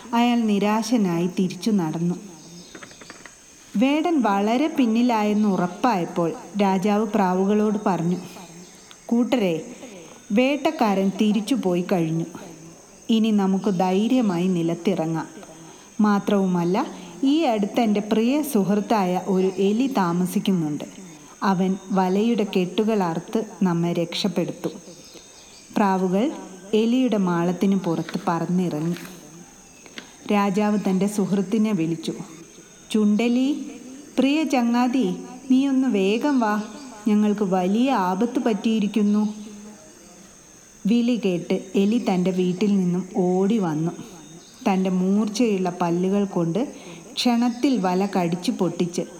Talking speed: 80 wpm